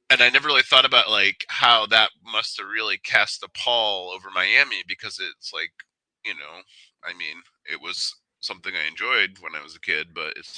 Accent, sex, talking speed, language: American, male, 200 wpm, English